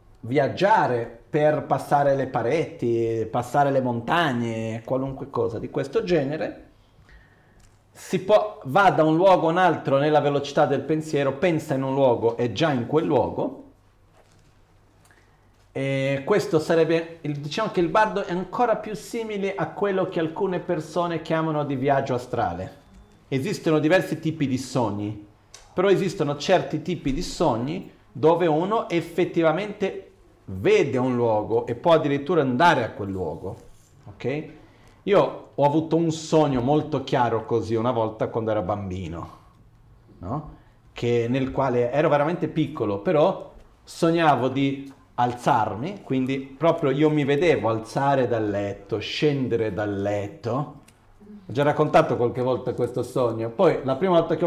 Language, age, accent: Italian, 40-59, native